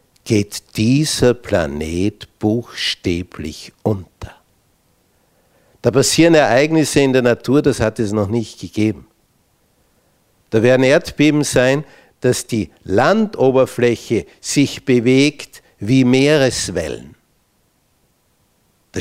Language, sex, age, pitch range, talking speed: German, male, 60-79, 110-150 Hz, 90 wpm